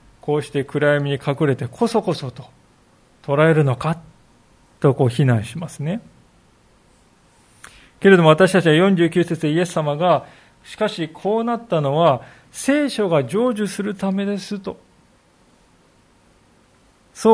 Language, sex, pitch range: Japanese, male, 145-195 Hz